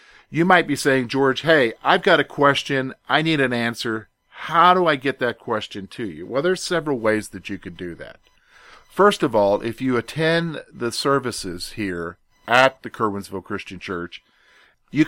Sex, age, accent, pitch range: male, 50-69, American, 110-145 Hz